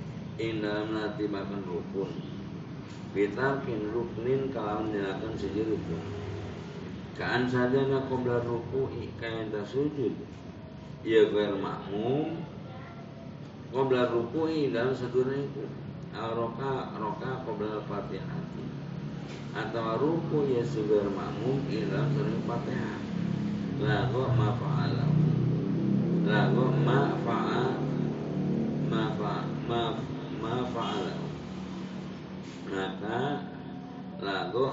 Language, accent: Indonesian, native